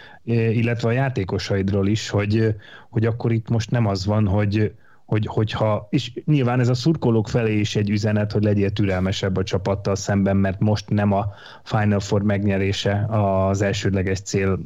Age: 30-49